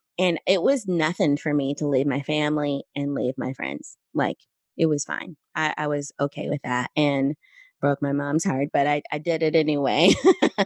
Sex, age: female, 20-39